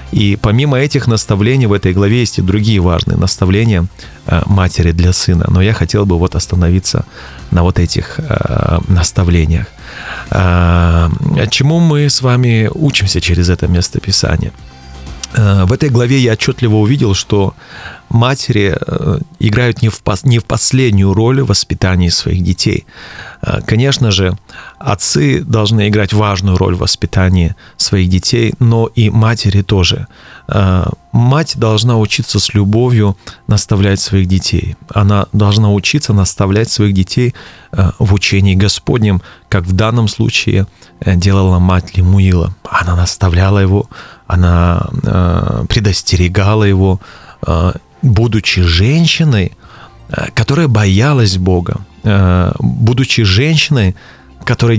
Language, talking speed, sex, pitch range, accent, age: Russian, 115 wpm, male, 95-120 Hz, native, 30-49